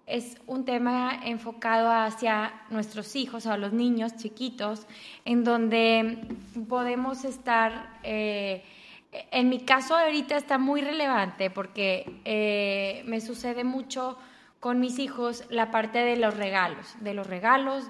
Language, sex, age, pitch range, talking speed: English, female, 20-39, 215-255 Hz, 135 wpm